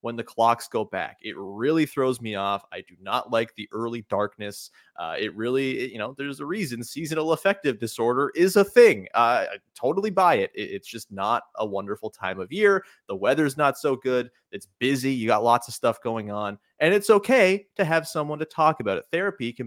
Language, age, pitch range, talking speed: English, 30-49, 110-140 Hz, 215 wpm